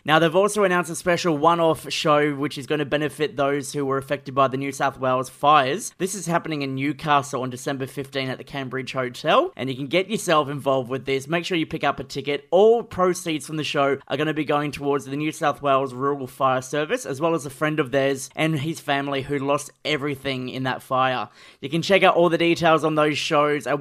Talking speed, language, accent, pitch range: 240 wpm, English, Australian, 140-165 Hz